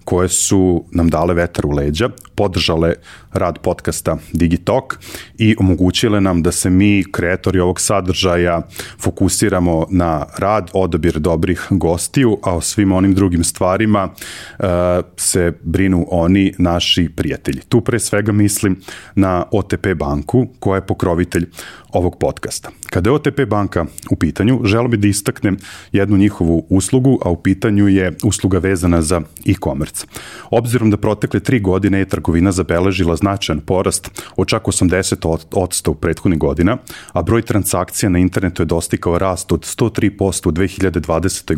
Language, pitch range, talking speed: English, 85-100 Hz, 145 wpm